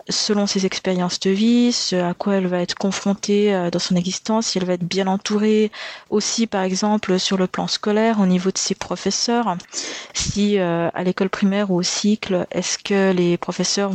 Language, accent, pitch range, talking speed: French, French, 190-220 Hz, 195 wpm